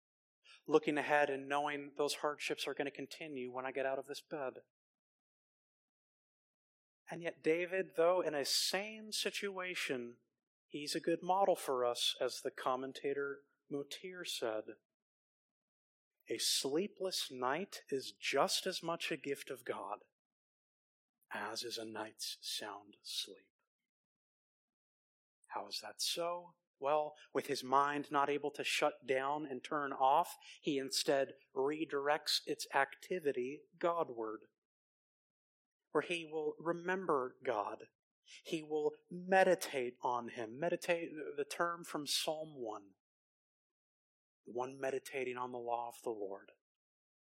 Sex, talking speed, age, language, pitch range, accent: male, 125 wpm, 30-49, English, 125-170 Hz, American